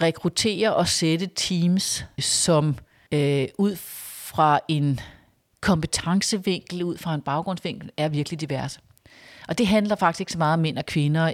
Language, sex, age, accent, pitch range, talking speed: Danish, female, 40-59, native, 150-180 Hz, 150 wpm